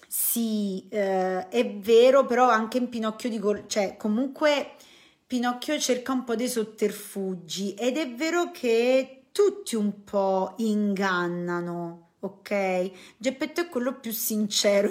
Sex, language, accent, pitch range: female, Italian, native, 185-250 Hz